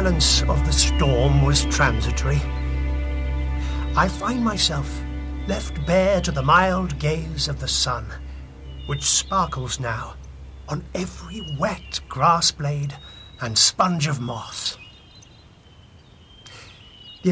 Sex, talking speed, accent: male, 105 wpm, British